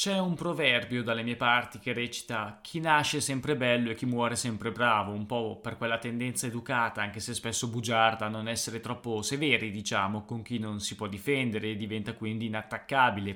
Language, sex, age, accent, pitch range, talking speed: Italian, male, 20-39, native, 110-125 Hz, 195 wpm